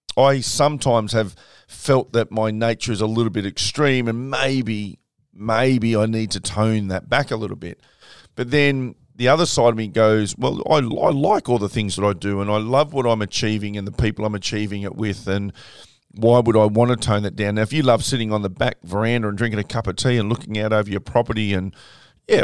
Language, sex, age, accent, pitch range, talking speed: English, male, 40-59, Australian, 105-120 Hz, 235 wpm